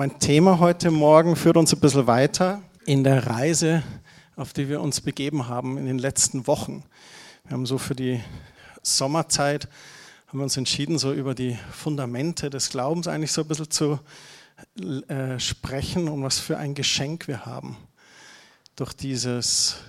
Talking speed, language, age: 160 wpm, German, 50-69